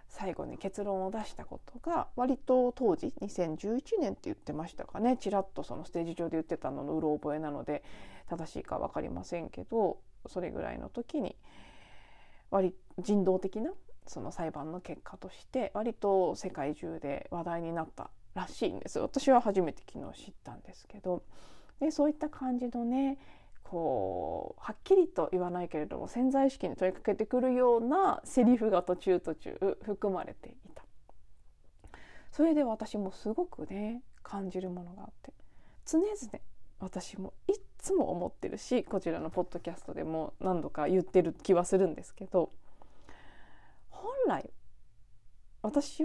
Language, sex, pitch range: Japanese, female, 180-265 Hz